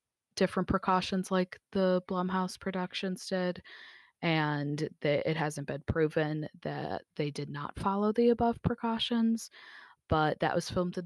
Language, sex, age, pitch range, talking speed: English, female, 20-39, 145-180 Hz, 135 wpm